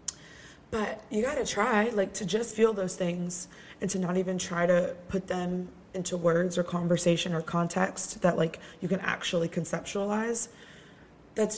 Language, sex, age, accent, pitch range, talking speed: English, female, 20-39, American, 170-195 Hz, 165 wpm